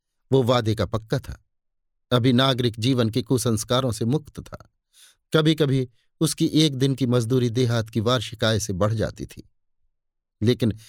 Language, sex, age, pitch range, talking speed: Hindi, male, 50-69, 105-140 Hz, 155 wpm